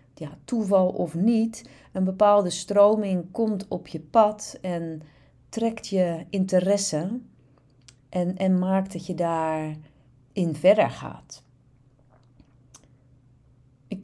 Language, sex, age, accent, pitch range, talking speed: Dutch, female, 40-59, Dutch, 155-190 Hz, 105 wpm